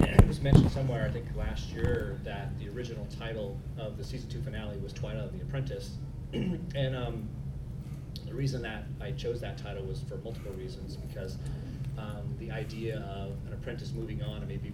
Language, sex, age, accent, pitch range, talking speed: English, male, 30-49, American, 120-135 Hz, 190 wpm